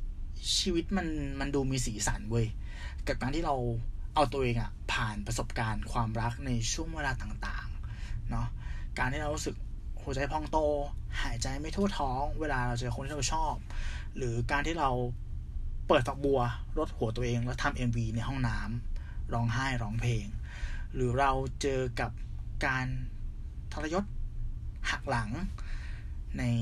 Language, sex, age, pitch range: Thai, male, 20-39, 105-130 Hz